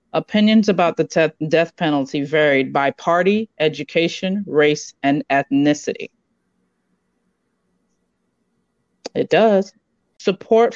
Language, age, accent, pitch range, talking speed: English, 30-49, American, 145-180 Hz, 90 wpm